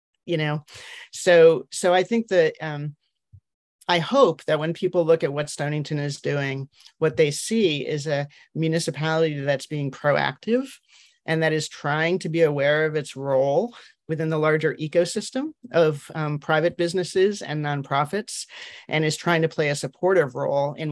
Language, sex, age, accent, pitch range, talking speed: English, male, 40-59, American, 150-170 Hz, 165 wpm